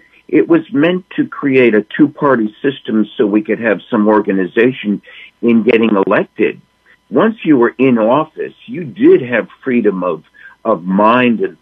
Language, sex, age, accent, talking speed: English, male, 50-69, American, 155 wpm